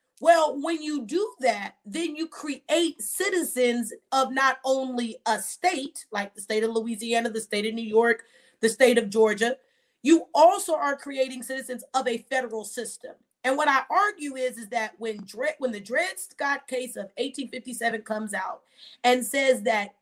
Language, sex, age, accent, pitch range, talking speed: English, female, 30-49, American, 230-310 Hz, 170 wpm